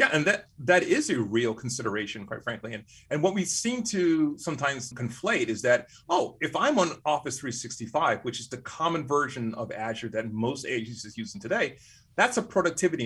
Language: English